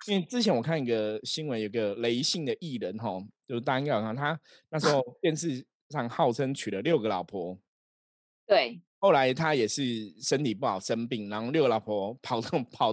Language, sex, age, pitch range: Chinese, male, 20-39, 105-140 Hz